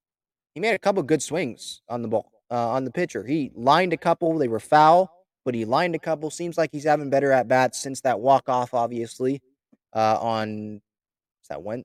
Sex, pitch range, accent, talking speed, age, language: male, 130-170 Hz, American, 205 wpm, 20-39, English